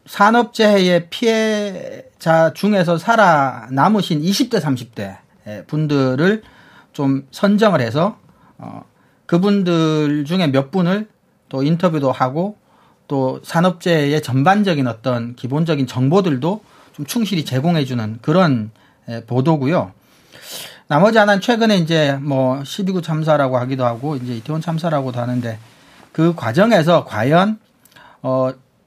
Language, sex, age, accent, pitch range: Korean, male, 40-59, native, 130-190 Hz